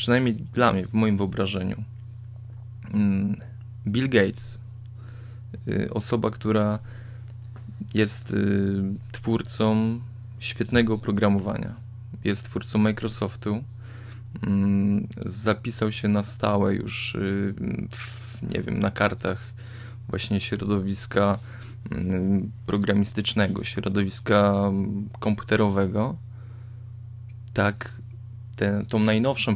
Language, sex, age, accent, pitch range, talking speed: Polish, male, 20-39, native, 105-115 Hz, 70 wpm